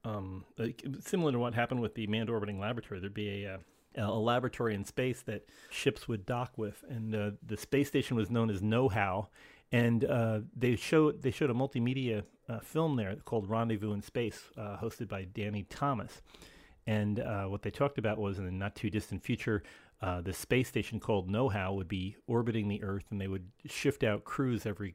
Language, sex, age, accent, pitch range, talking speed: English, male, 30-49, American, 105-125 Hz, 195 wpm